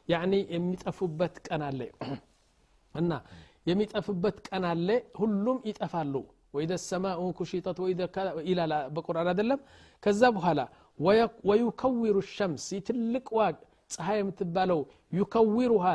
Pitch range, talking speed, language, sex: 170-200 Hz, 90 wpm, Amharic, male